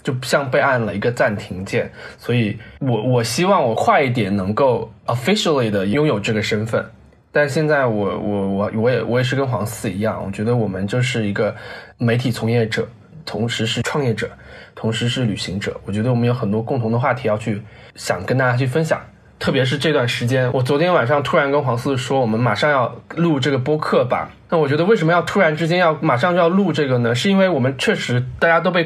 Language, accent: Chinese, native